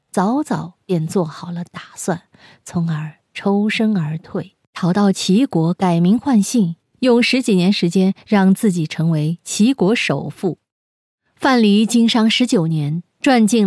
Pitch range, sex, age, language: 165-230 Hz, female, 20-39, Chinese